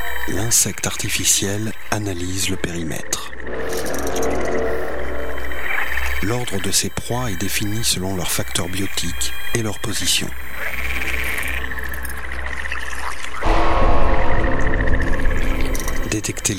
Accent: French